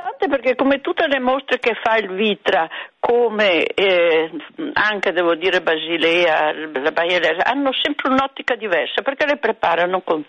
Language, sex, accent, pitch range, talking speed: Italian, female, native, 175-275 Hz, 145 wpm